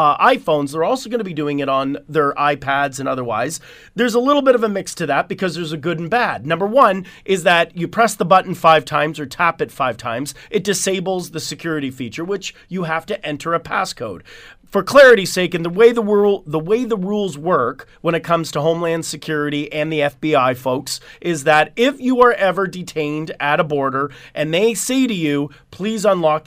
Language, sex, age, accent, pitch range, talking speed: English, male, 30-49, American, 150-200 Hz, 215 wpm